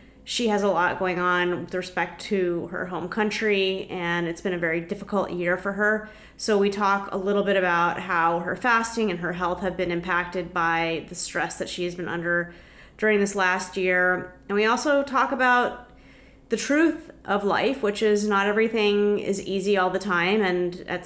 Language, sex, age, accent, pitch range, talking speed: English, female, 30-49, American, 180-215 Hz, 195 wpm